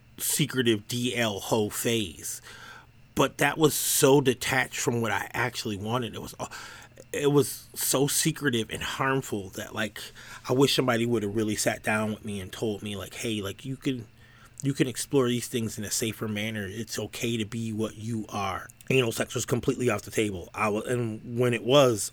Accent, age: American, 30-49